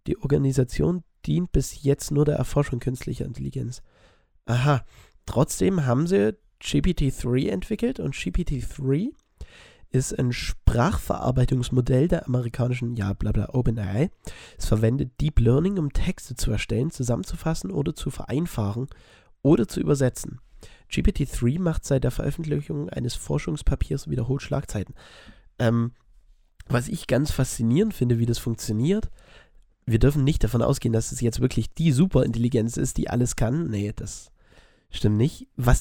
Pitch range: 115-145 Hz